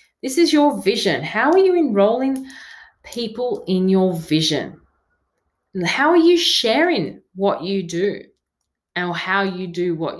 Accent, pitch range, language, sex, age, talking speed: Australian, 175-260 Hz, English, female, 30-49, 140 wpm